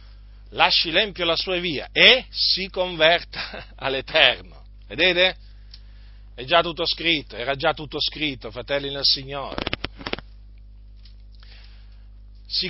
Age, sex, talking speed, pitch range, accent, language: 50-69, male, 105 wpm, 100-170 Hz, native, Italian